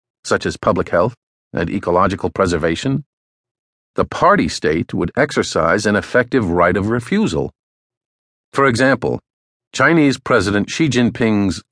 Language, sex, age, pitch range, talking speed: English, male, 50-69, 100-130 Hz, 120 wpm